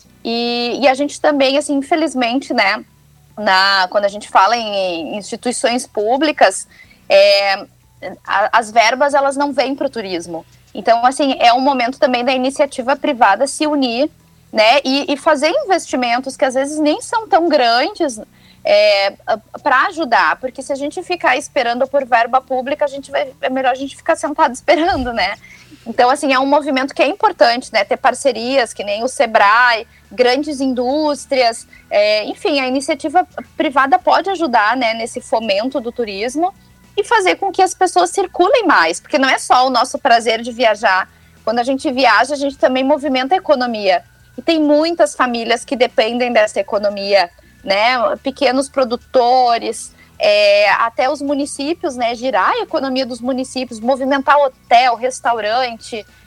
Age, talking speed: 20-39, 150 wpm